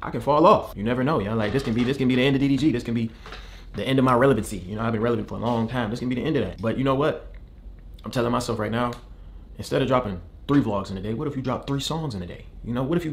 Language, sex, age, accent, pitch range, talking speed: English, male, 20-39, American, 90-120 Hz, 340 wpm